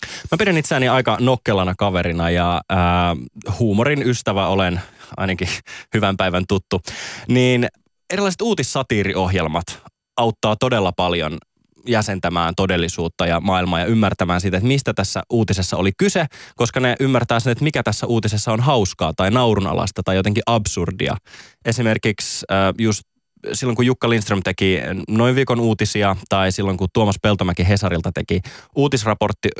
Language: Finnish